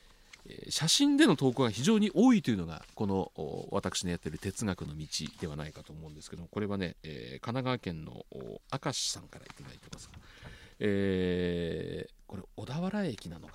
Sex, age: male, 40-59